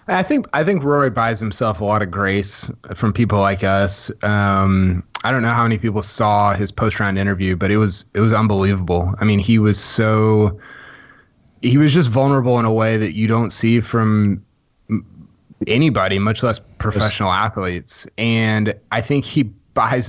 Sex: male